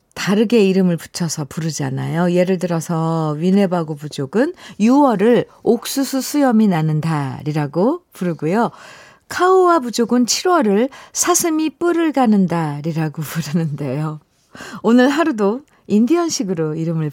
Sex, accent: female, native